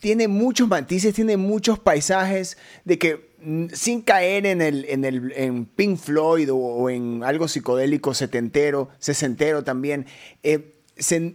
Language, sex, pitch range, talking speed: Spanish, male, 140-185 Hz, 145 wpm